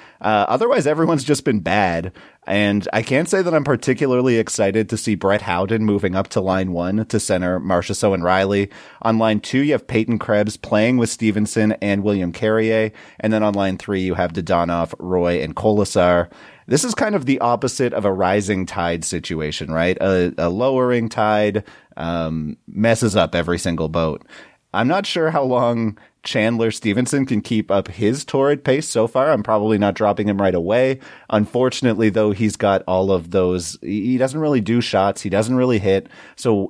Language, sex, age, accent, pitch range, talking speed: English, male, 30-49, American, 95-120 Hz, 185 wpm